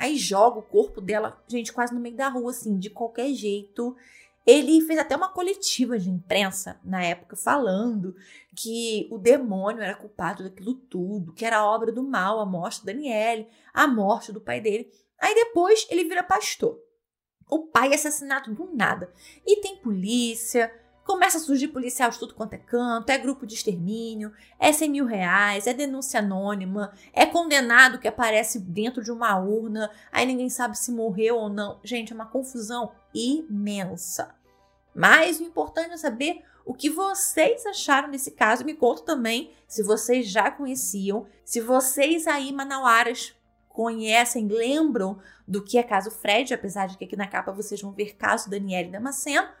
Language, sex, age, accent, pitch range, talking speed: Portuguese, female, 20-39, Brazilian, 210-275 Hz, 170 wpm